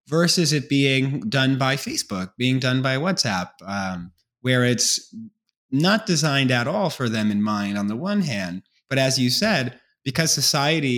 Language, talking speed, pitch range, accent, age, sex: English, 170 wpm, 115-155 Hz, American, 30-49, male